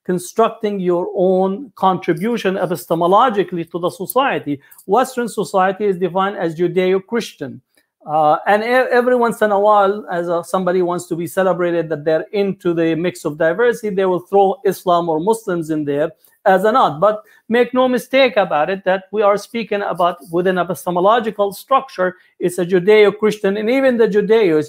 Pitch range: 175-210 Hz